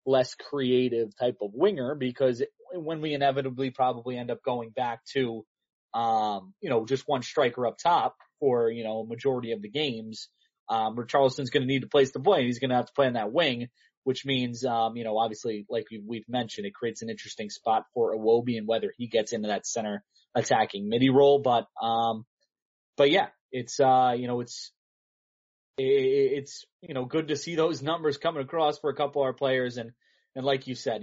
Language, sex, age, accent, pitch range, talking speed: English, male, 20-39, American, 115-140 Hz, 205 wpm